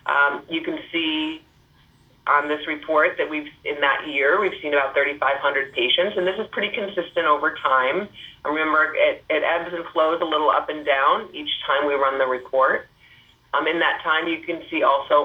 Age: 30-49